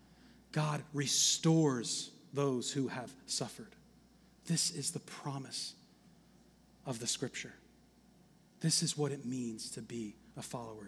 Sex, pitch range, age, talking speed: male, 130-170 Hz, 30-49, 120 wpm